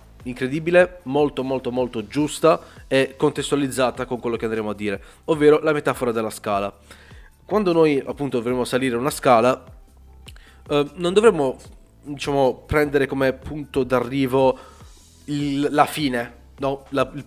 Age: 30-49